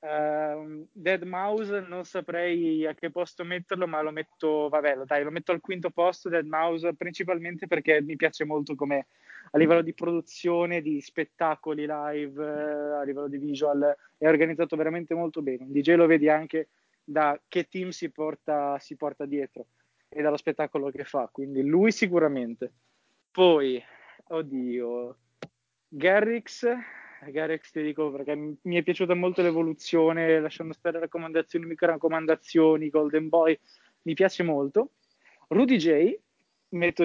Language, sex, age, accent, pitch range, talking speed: Italian, male, 20-39, native, 150-175 Hz, 145 wpm